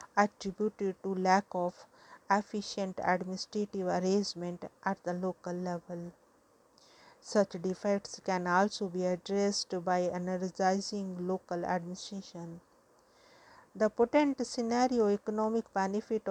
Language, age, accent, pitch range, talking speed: English, 50-69, Indian, 185-210 Hz, 95 wpm